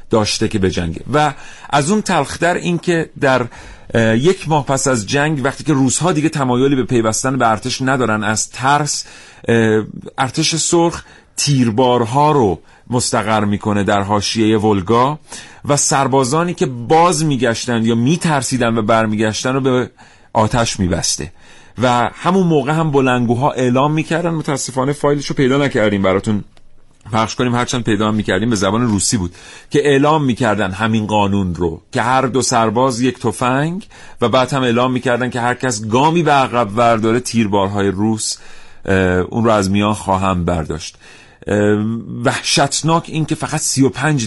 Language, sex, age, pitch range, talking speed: Persian, male, 40-59, 105-135 Hz, 145 wpm